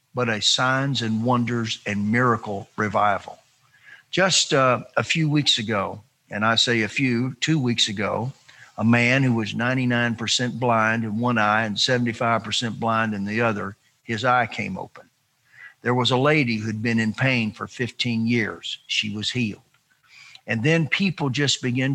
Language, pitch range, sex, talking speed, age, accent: English, 110-130 Hz, male, 165 wpm, 50-69, American